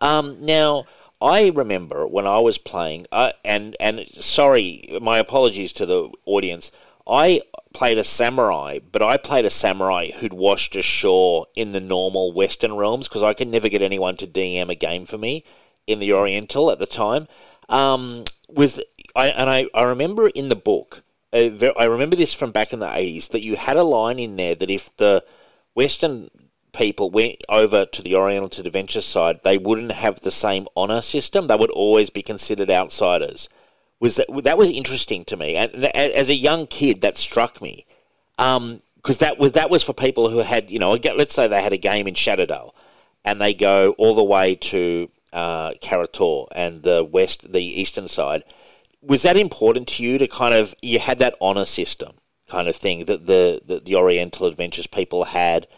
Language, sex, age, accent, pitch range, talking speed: English, male, 40-59, Australian, 100-160 Hz, 190 wpm